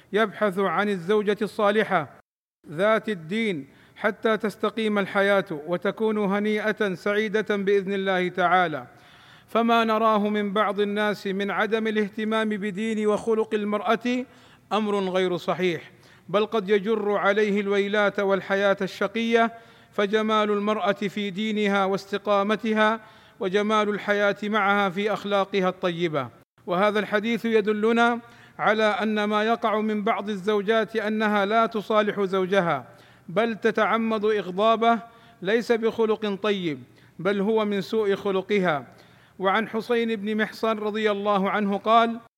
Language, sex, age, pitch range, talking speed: Arabic, male, 40-59, 200-220 Hz, 115 wpm